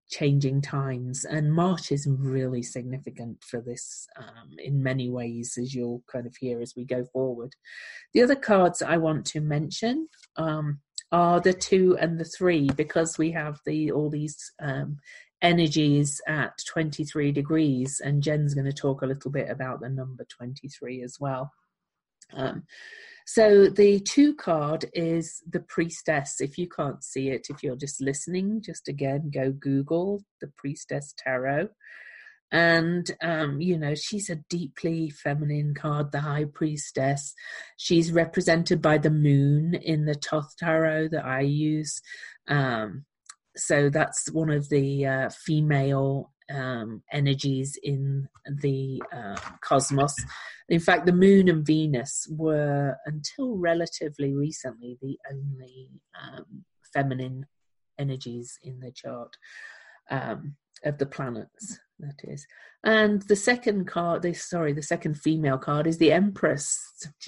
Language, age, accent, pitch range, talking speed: English, 40-59, British, 135-170 Hz, 145 wpm